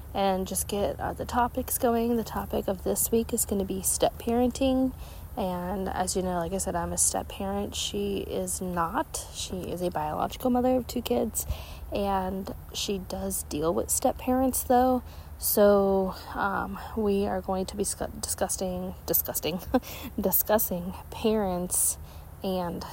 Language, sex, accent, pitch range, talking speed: English, female, American, 155-200 Hz, 150 wpm